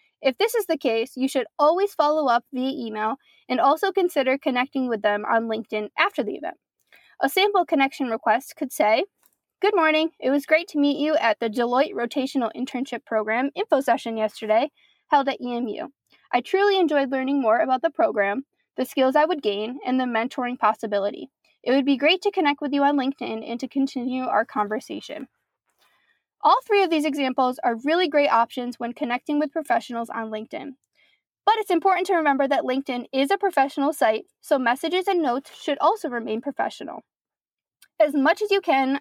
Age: 10-29